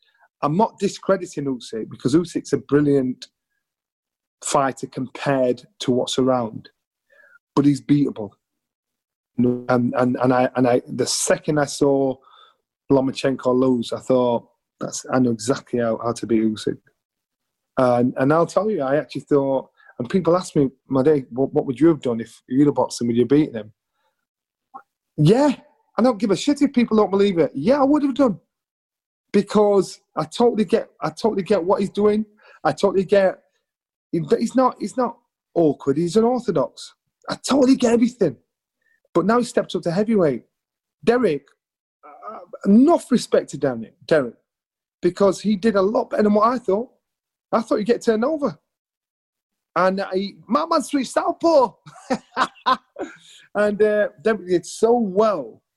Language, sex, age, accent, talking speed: English, male, 30-49, British, 160 wpm